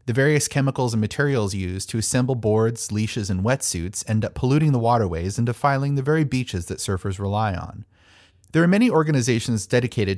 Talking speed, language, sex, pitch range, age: 185 wpm, English, male, 100-125 Hz, 30-49